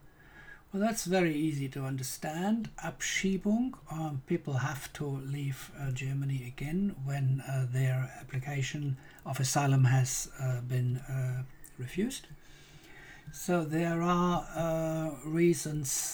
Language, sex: English, male